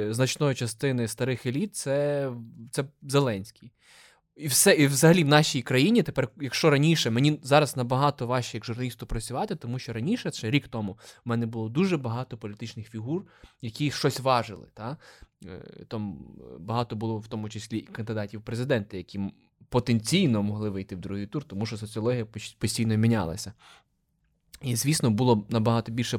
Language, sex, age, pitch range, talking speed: Ukrainian, male, 20-39, 105-125 Hz, 150 wpm